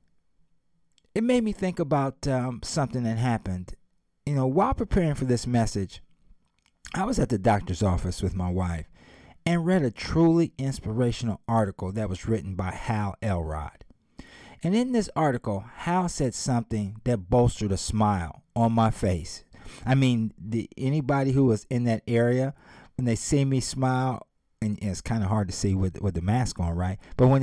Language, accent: English, American